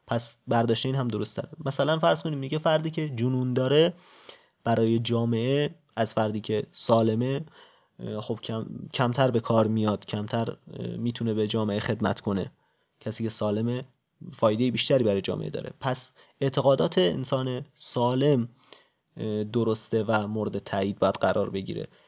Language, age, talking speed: Persian, 20-39, 135 wpm